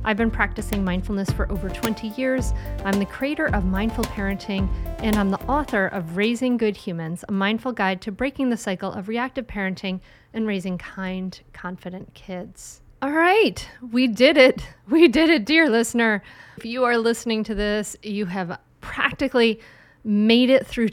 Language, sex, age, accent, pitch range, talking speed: English, female, 30-49, American, 185-235 Hz, 170 wpm